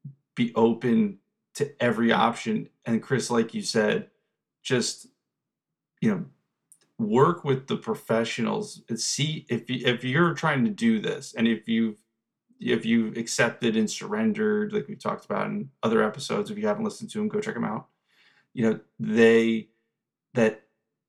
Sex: male